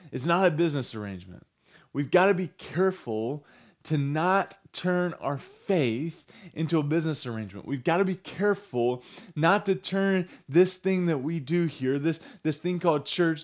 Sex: male